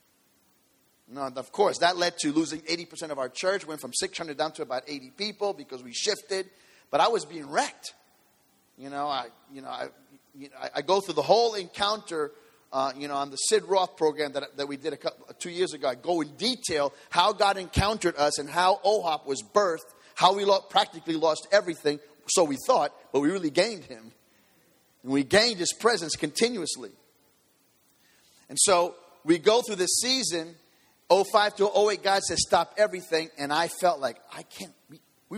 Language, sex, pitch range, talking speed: English, male, 145-195 Hz, 190 wpm